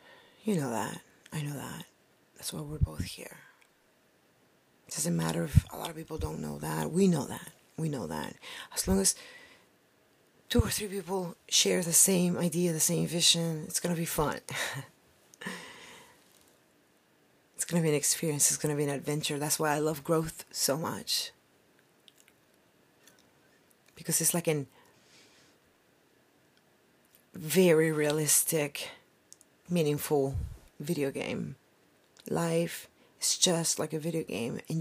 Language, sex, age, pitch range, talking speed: English, female, 40-59, 150-175 Hz, 145 wpm